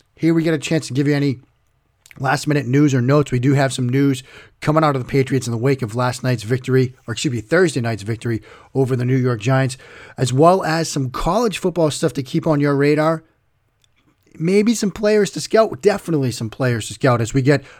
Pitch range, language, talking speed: 125-160 Hz, English, 225 wpm